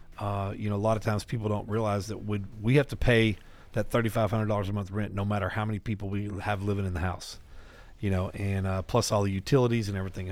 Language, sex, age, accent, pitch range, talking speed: English, male, 40-59, American, 100-120 Hz, 240 wpm